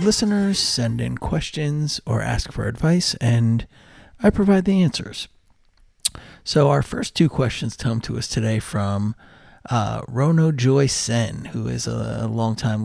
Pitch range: 115-145 Hz